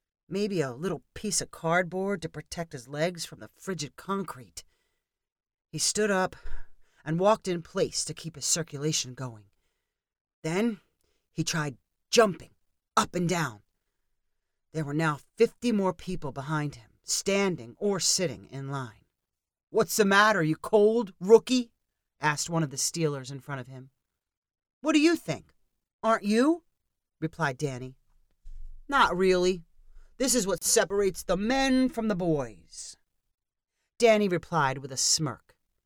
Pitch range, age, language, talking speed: 135-200 Hz, 40-59, English, 140 wpm